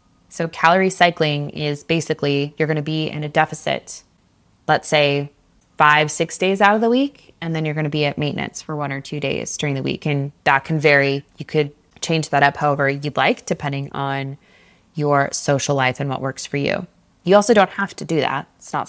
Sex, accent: female, American